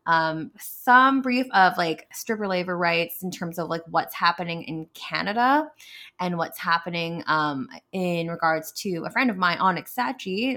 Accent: American